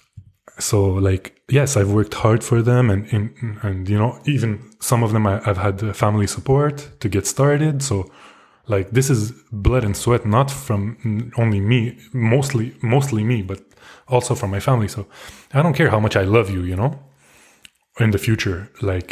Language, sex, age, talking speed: Dutch, male, 20-39, 180 wpm